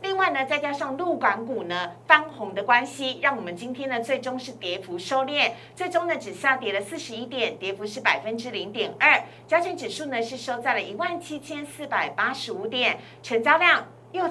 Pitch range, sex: 230-305 Hz, female